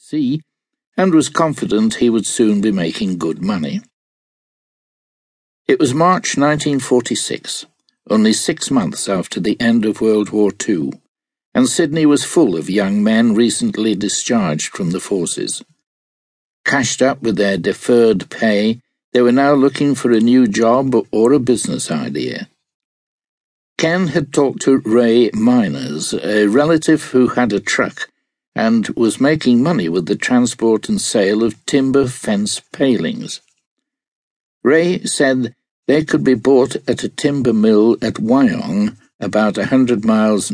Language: English